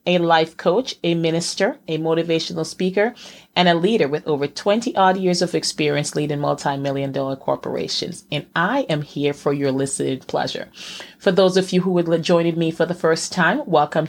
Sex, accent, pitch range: female, American, 150-185 Hz